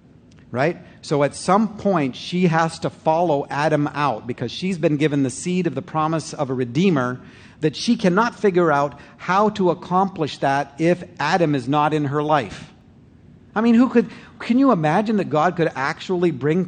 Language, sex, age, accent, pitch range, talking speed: English, male, 50-69, American, 130-175 Hz, 185 wpm